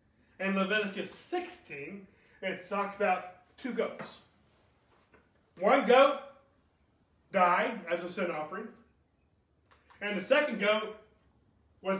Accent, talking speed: American, 100 wpm